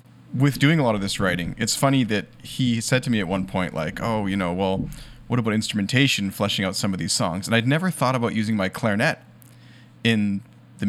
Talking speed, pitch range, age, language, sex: 225 wpm, 105-130 Hz, 30-49, English, male